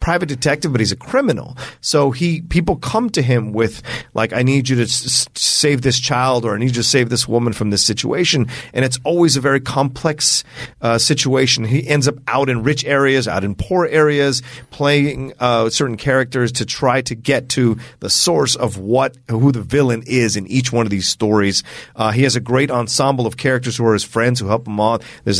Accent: American